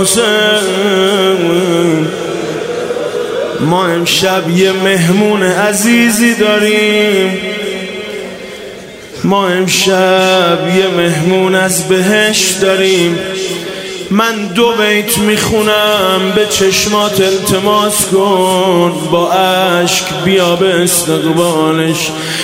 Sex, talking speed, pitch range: male, 70 wpm, 190-235 Hz